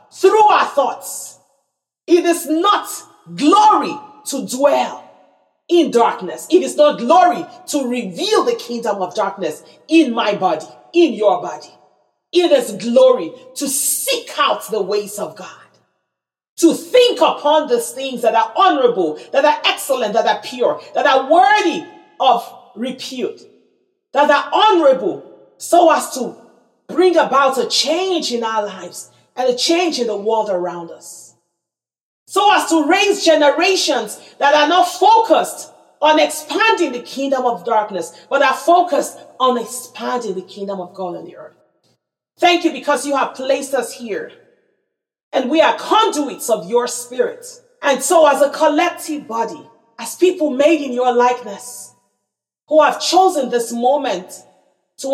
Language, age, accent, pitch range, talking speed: English, 40-59, Nigerian, 245-345 Hz, 150 wpm